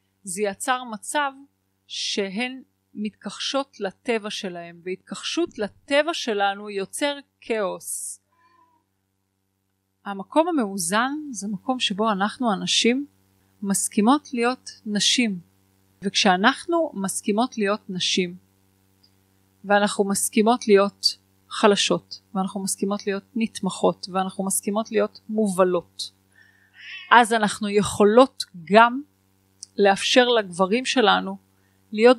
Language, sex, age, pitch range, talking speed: Hebrew, female, 30-49, 175-230 Hz, 85 wpm